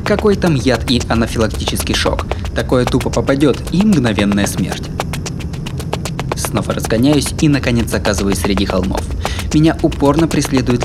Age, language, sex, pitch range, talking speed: 20-39, Russian, male, 100-145 Hz, 120 wpm